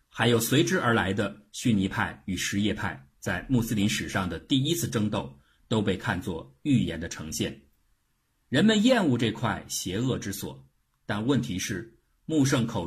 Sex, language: male, Chinese